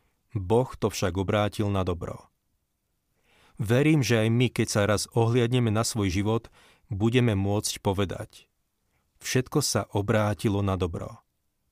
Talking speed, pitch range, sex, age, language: 130 wpm, 95-115 Hz, male, 40-59, Slovak